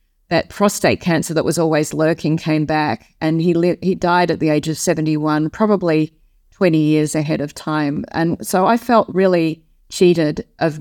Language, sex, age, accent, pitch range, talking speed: English, female, 30-49, Australian, 155-190 Hz, 180 wpm